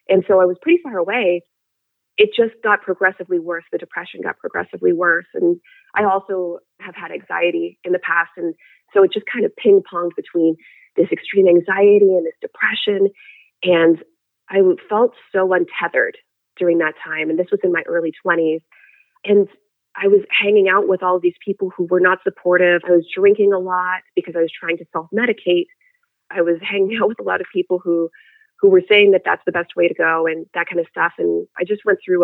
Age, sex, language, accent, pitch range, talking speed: 30-49, female, English, American, 175-215 Hz, 205 wpm